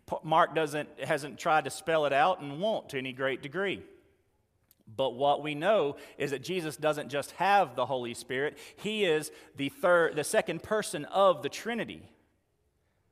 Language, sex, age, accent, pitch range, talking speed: English, male, 40-59, American, 115-175 Hz, 170 wpm